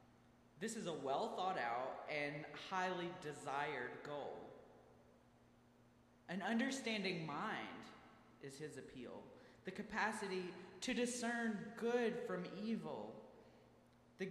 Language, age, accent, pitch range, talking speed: English, 30-49, American, 165-220 Hz, 90 wpm